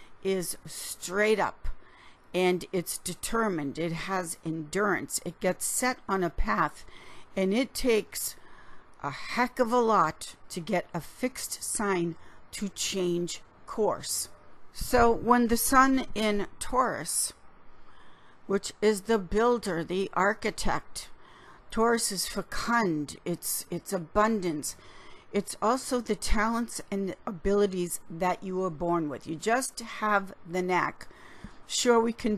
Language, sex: English, female